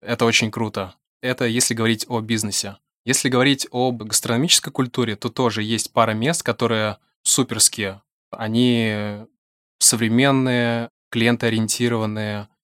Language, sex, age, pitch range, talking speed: Russian, male, 20-39, 110-125 Hz, 110 wpm